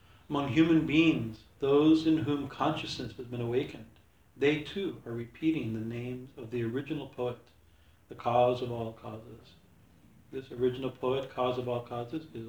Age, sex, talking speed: 50-69, male, 160 wpm